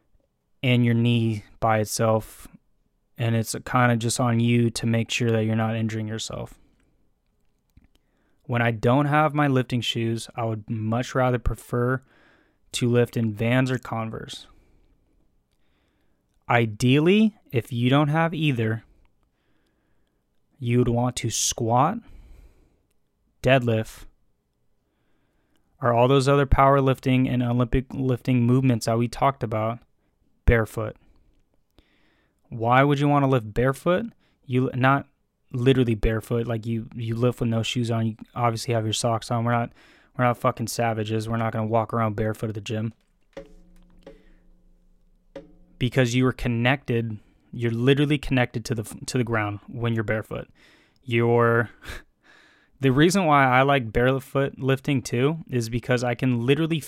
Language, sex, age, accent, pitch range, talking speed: English, male, 20-39, American, 115-130 Hz, 140 wpm